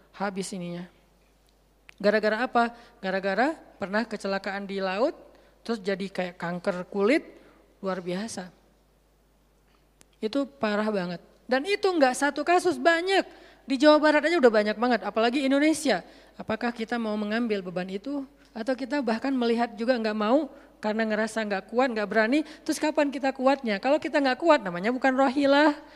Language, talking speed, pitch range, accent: Indonesian, 150 wpm, 215-295 Hz, native